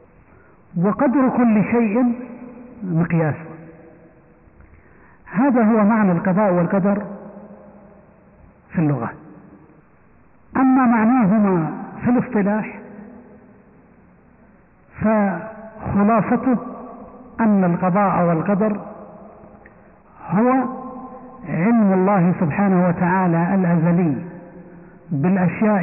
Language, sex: Arabic, male